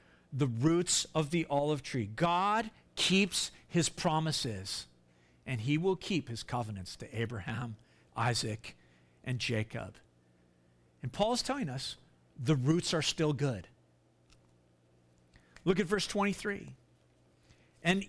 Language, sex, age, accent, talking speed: English, male, 50-69, American, 120 wpm